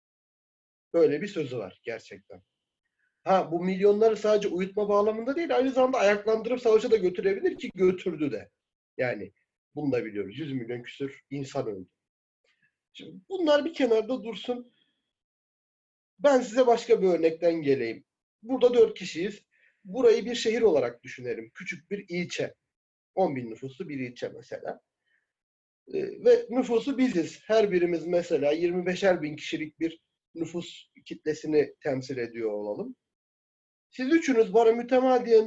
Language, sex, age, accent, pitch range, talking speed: Turkish, male, 40-59, native, 170-260 Hz, 130 wpm